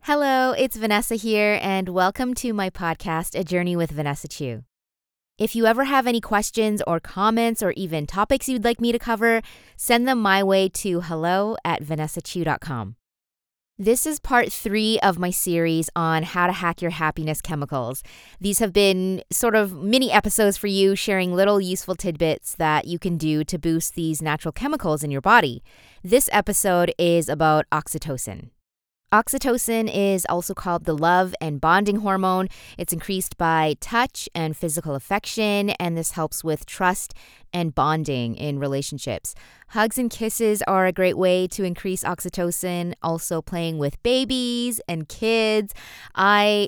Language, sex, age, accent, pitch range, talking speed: English, female, 20-39, American, 155-205 Hz, 160 wpm